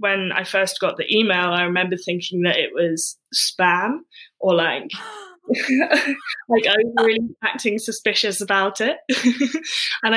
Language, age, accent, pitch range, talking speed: English, 10-29, British, 175-215 Hz, 140 wpm